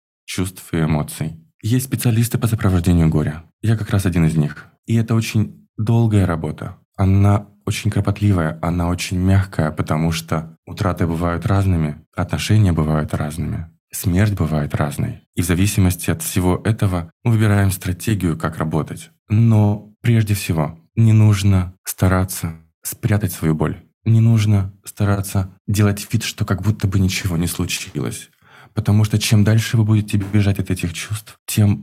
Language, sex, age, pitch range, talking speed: Russian, male, 20-39, 85-110 Hz, 150 wpm